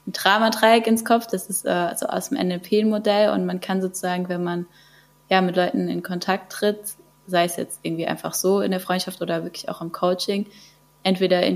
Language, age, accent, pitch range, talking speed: German, 20-39, German, 175-205 Hz, 200 wpm